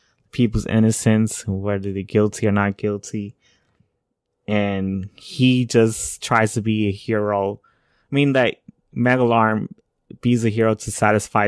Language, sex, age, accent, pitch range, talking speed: English, male, 20-39, American, 100-120 Hz, 130 wpm